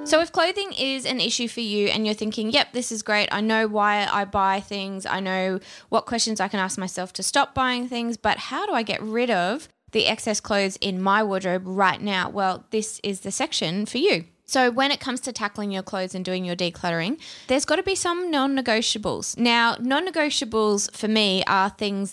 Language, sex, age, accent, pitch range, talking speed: English, female, 20-39, Australian, 190-240 Hz, 215 wpm